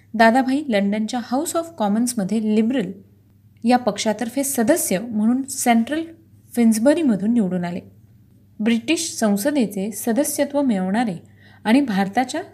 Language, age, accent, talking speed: Marathi, 30-49, native, 95 wpm